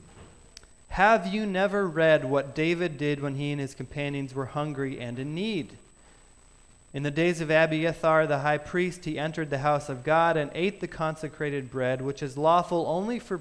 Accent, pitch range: American, 130-175 Hz